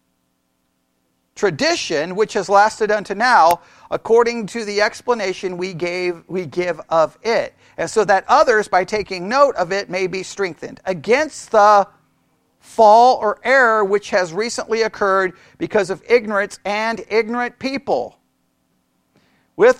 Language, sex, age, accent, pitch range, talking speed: English, male, 50-69, American, 180-245 Hz, 135 wpm